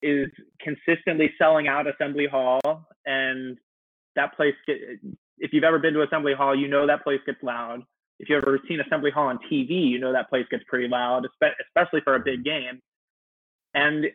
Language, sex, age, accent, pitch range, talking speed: English, male, 20-39, American, 140-165 Hz, 180 wpm